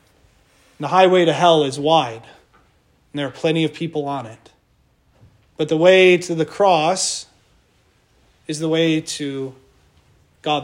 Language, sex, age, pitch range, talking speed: English, male, 30-49, 135-200 Hz, 140 wpm